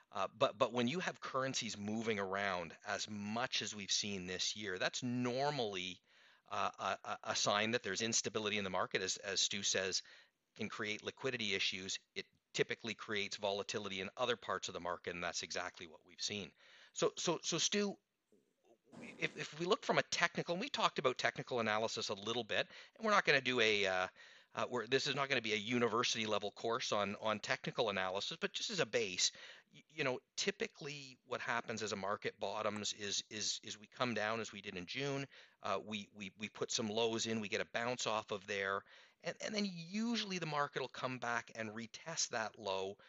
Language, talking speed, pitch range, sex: English, 205 wpm, 105-140 Hz, male